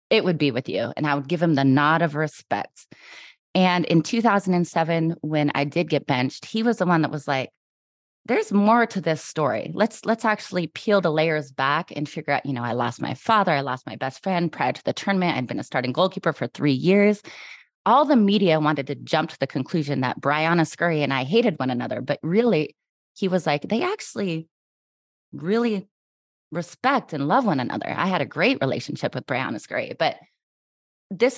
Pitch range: 140-190 Hz